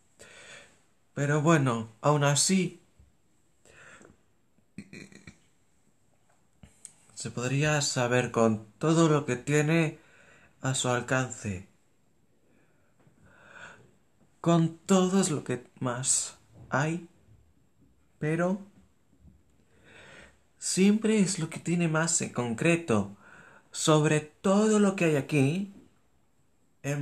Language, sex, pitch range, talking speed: Spanish, male, 115-165 Hz, 85 wpm